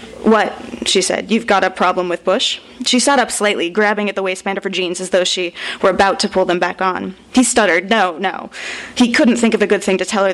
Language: English